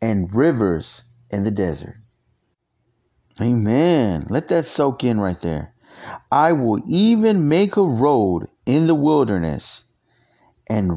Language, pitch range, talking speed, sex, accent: English, 105-140 Hz, 120 wpm, male, American